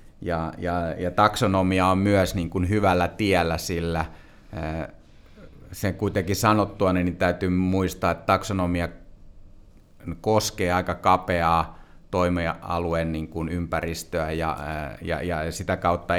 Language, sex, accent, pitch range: Finnish, male, native, 85-95 Hz